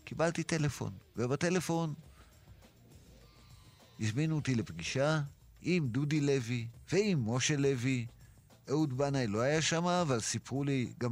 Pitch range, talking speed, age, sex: 115-150 Hz, 115 wpm, 50-69, male